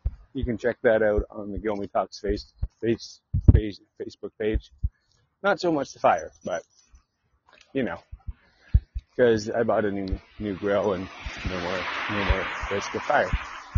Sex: male